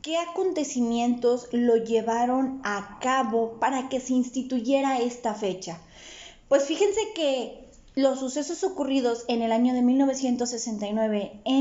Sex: female